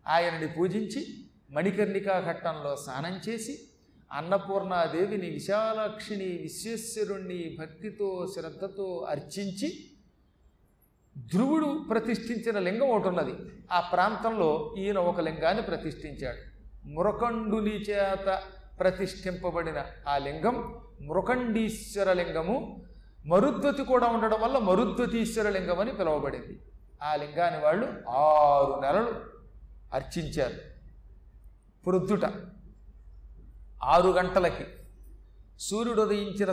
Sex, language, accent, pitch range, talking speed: male, Telugu, native, 155-205 Hz, 80 wpm